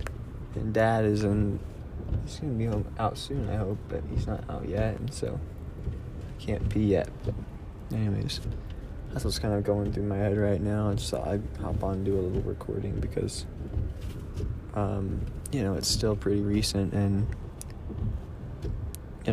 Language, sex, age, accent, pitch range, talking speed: English, male, 20-39, American, 95-105 Hz, 175 wpm